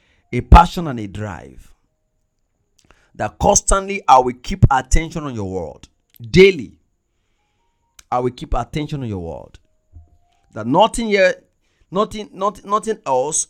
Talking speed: 130 wpm